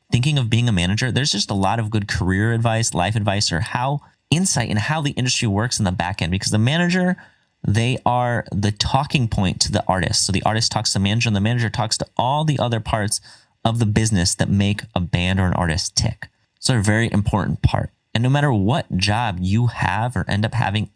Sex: male